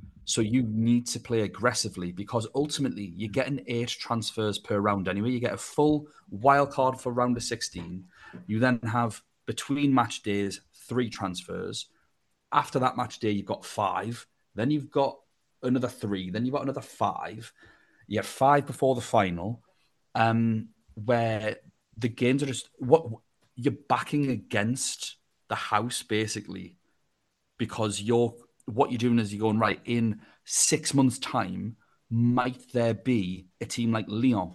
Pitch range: 105-125 Hz